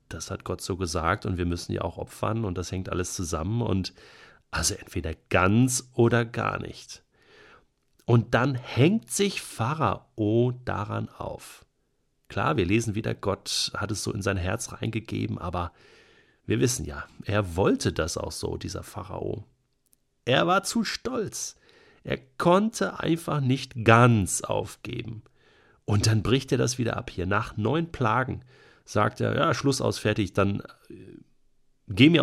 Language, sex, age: German, male, 40-59